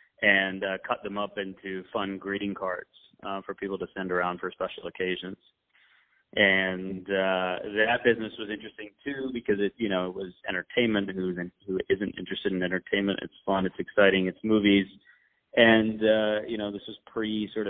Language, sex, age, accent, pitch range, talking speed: English, male, 30-49, American, 95-105 Hz, 175 wpm